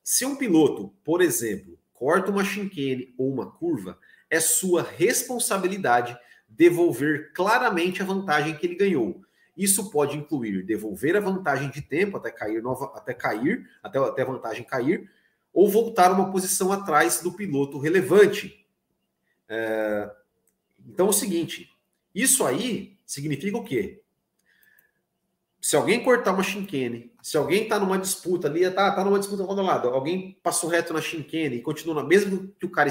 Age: 40-59